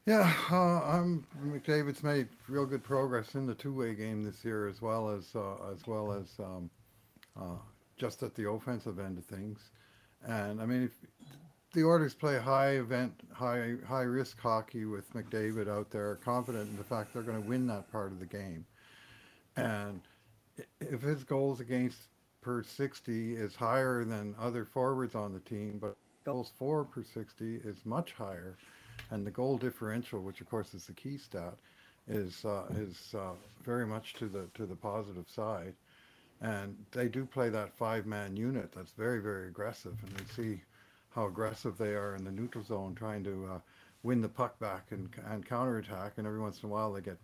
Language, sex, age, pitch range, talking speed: English, male, 60-79, 100-125 Hz, 180 wpm